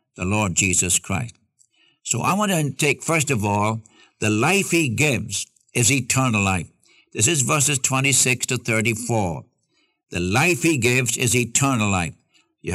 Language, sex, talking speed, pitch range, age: English, male, 155 wpm, 110-145 Hz, 60-79